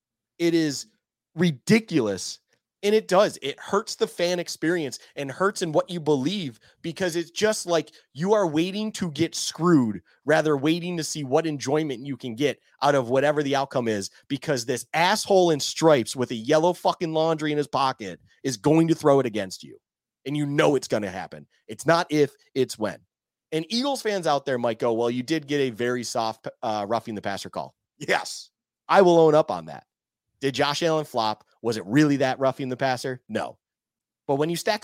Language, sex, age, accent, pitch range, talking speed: English, male, 30-49, American, 125-165 Hz, 200 wpm